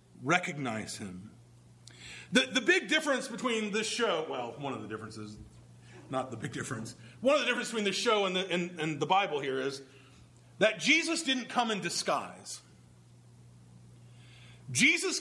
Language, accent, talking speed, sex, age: English, American, 160 wpm, male, 40-59